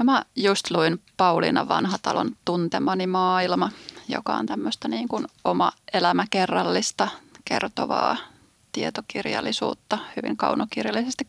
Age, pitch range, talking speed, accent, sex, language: 20-39, 195-255 Hz, 95 wpm, native, female, Finnish